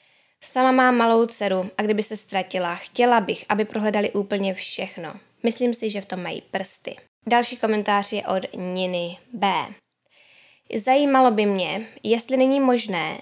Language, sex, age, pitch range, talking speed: Czech, female, 10-29, 195-235 Hz, 150 wpm